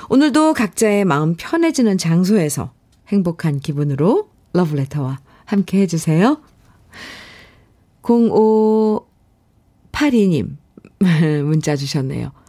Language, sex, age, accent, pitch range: Korean, female, 50-69, native, 150-225 Hz